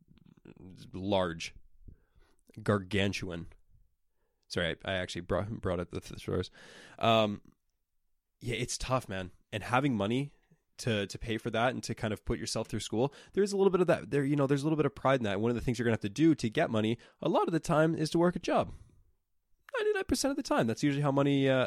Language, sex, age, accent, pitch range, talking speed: English, male, 20-39, American, 100-130 Hz, 230 wpm